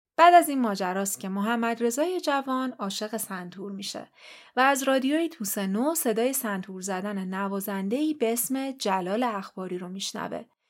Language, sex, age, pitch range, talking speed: Persian, female, 30-49, 200-275 Hz, 145 wpm